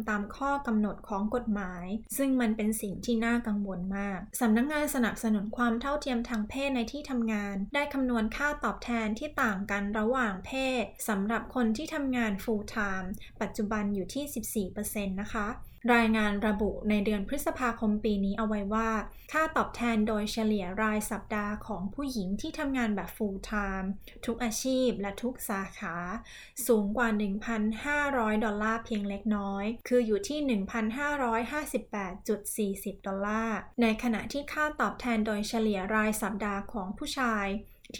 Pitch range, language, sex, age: 205-245 Hz, Thai, female, 20-39